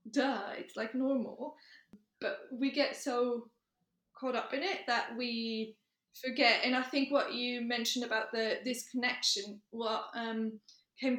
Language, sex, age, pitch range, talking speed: English, female, 20-39, 225-270 Hz, 150 wpm